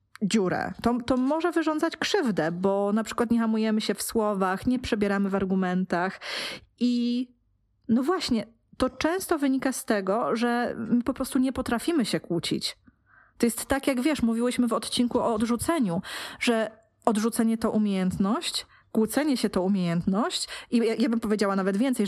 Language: Polish